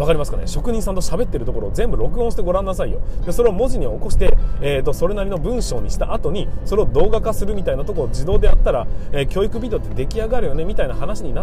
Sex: male